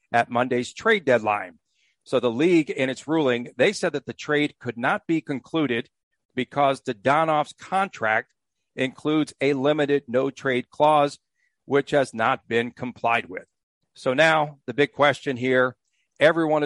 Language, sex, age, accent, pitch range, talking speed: English, male, 50-69, American, 130-155 Hz, 150 wpm